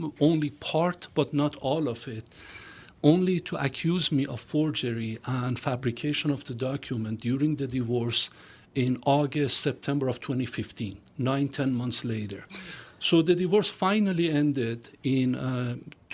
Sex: male